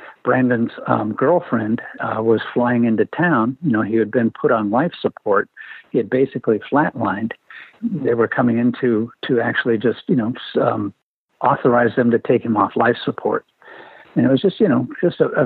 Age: 60-79